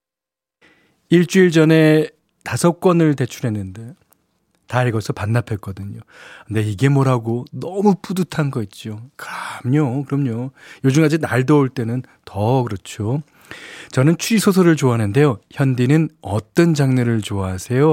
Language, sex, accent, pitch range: Korean, male, native, 115-170 Hz